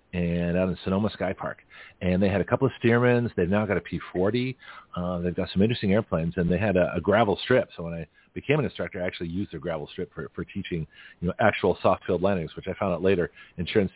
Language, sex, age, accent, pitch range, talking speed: English, male, 40-59, American, 90-115 Hz, 250 wpm